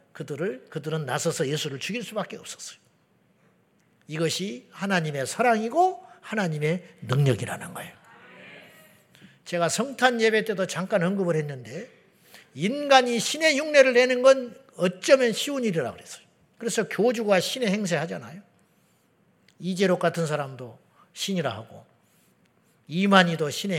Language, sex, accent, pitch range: Korean, male, Japanese, 150-230 Hz